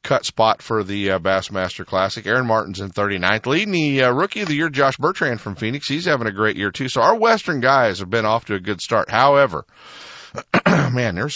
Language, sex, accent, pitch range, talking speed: English, male, American, 85-130 Hz, 220 wpm